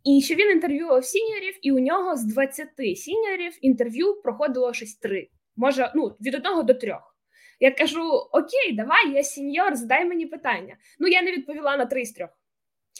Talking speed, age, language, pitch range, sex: 175 wpm, 10-29, Ukrainian, 225-305 Hz, female